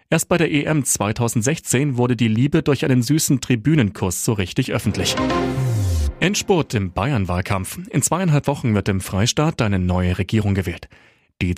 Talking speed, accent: 150 wpm, German